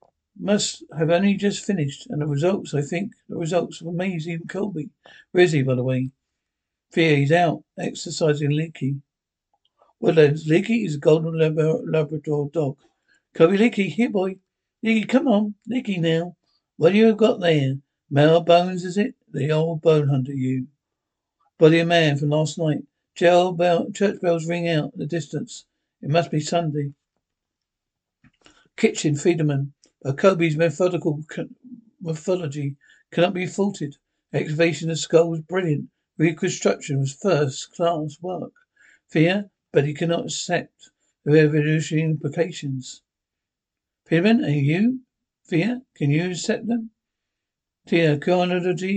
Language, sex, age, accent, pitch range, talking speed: English, male, 60-79, British, 150-185 Hz, 135 wpm